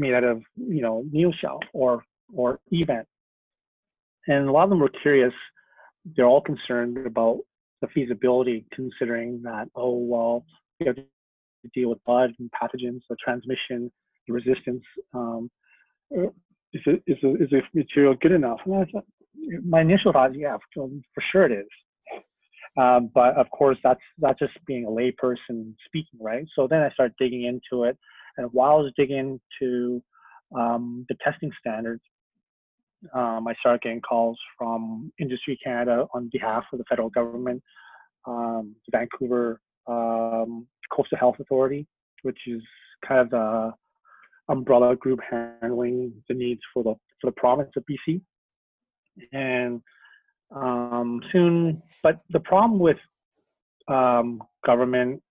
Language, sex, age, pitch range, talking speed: English, male, 30-49, 120-145 Hz, 150 wpm